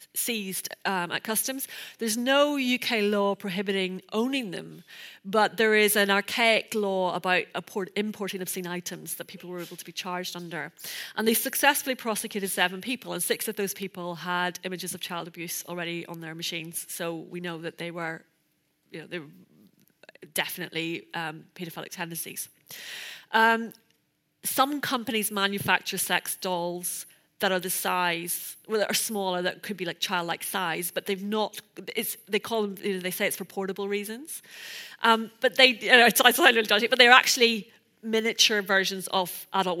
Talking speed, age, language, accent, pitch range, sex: 175 wpm, 30-49, English, British, 175-210 Hz, female